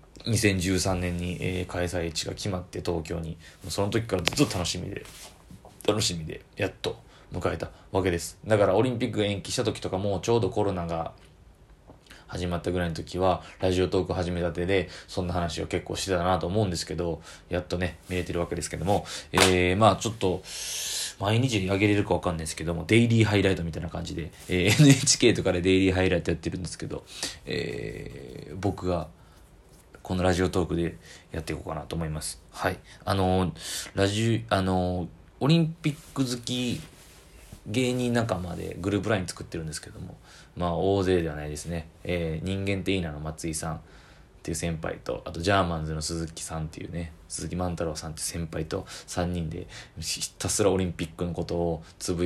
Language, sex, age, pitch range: Japanese, male, 20-39, 85-95 Hz